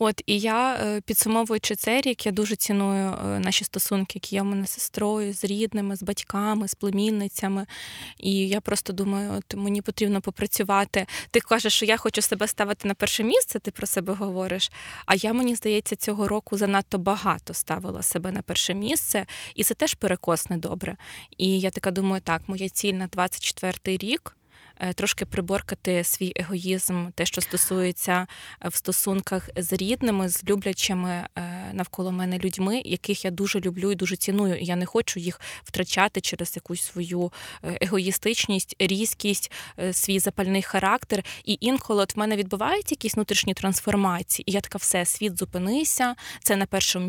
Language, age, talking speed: Ukrainian, 20-39, 160 wpm